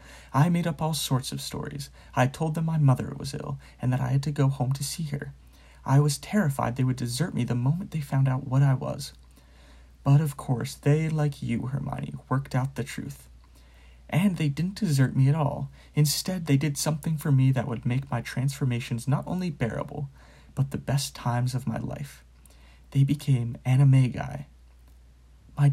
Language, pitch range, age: English, 120-150 Hz, 30-49